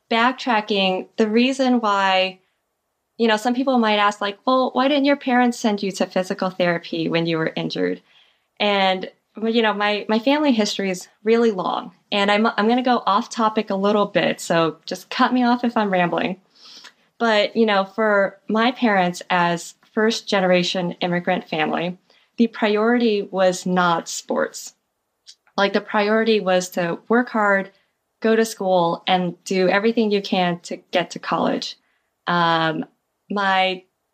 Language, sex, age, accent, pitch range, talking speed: English, female, 20-39, American, 180-225 Hz, 160 wpm